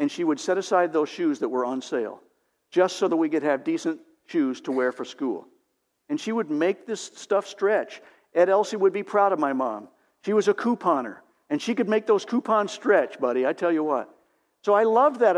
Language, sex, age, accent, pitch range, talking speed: English, male, 60-79, American, 160-235 Hz, 225 wpm